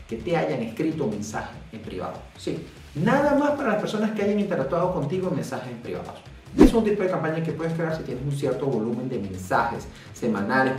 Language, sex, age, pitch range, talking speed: Spanish, male, 30-49, 135-195 Hz, 205 wpm